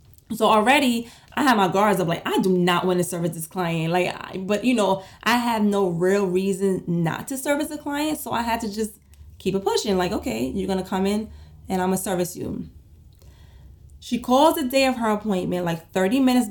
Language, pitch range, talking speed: English, 180-230 Hz, 225 wpm